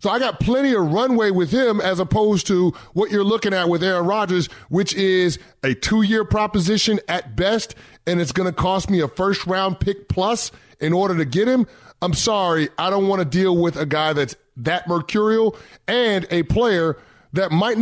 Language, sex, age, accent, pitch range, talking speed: English, male, 30-49, American, 145-185 Hz, 195 wpm